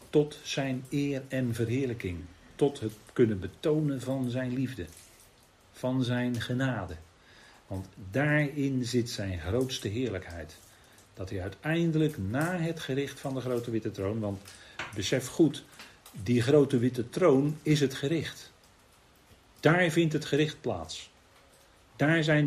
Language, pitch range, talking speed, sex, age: Dutch, 110-155 Hz, 130 wpm, male, 40-59